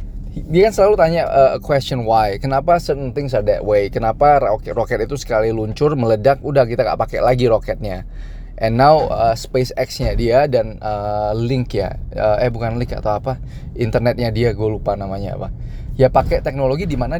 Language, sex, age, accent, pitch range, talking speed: Indonesian, male, 20-39, native, 110-140 Hz, 180 wpm